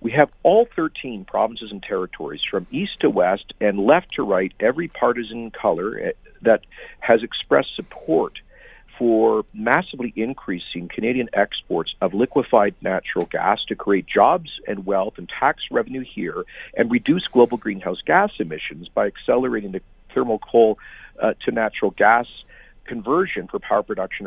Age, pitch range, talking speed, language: 50-69, 100-140 Hz, 145 wpm, English